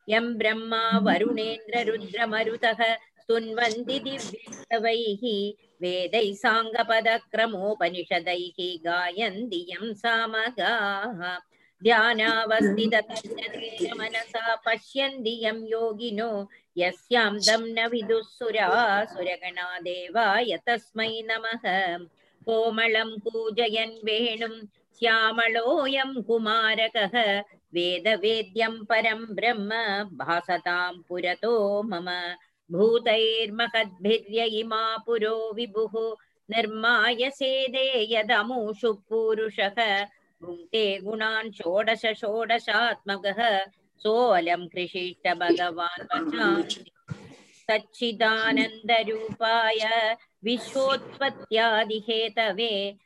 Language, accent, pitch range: Tamil, native, 205-230 Hz